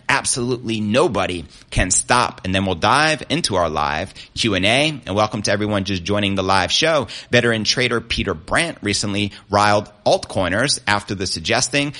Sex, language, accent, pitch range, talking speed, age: male, English, American, 95-120 Hz, 155 wpm, 30-49